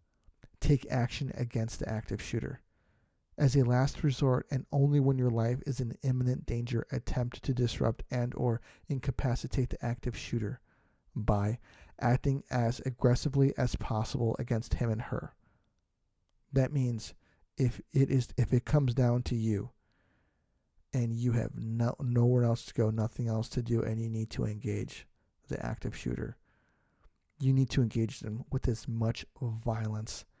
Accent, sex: American, male